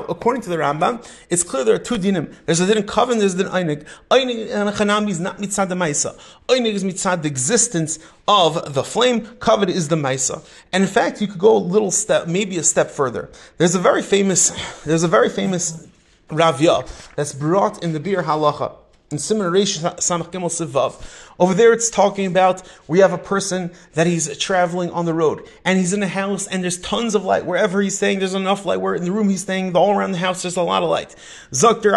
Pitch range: 165-205 Hz